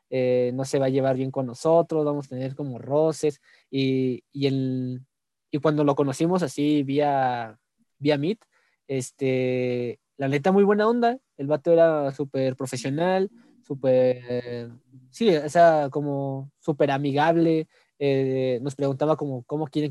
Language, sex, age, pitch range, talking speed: Spanish, male, 20-39, 130-155 Hz, 145 wpm